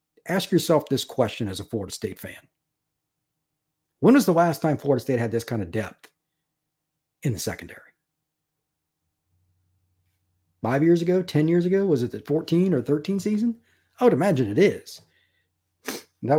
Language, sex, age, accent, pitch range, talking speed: English, male, 50-69, American, 110-170 Hz, 155 wpm